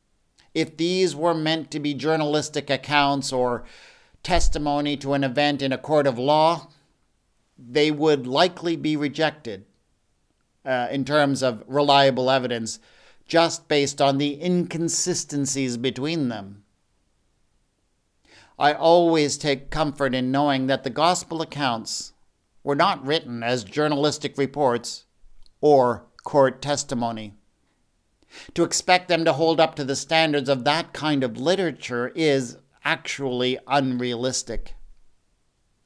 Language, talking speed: English, 120 wpm